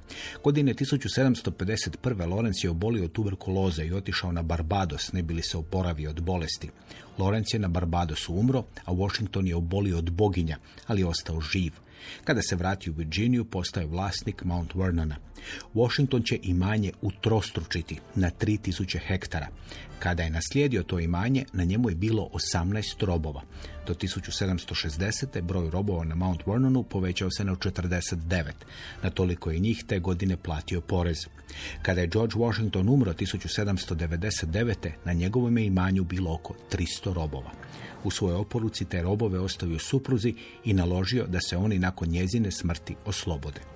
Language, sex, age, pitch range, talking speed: Croatian, male, 40-59, 85-105 Hz, 150 wpm